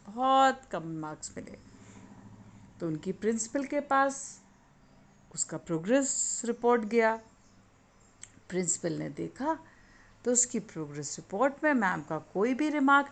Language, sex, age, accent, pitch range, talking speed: Hindi, female, 50-69, native, 165-275 Hz, 120 wpm